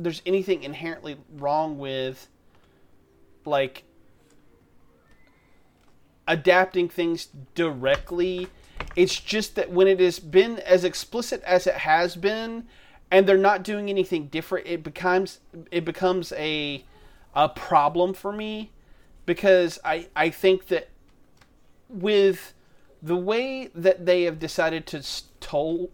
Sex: male